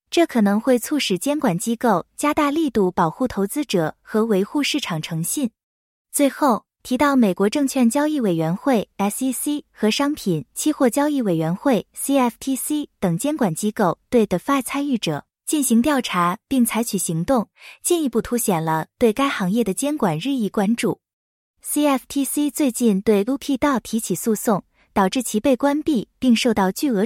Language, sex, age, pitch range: English, female, 20-39, 200-280 Hz